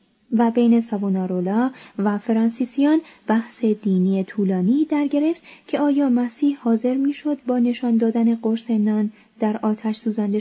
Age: 20-39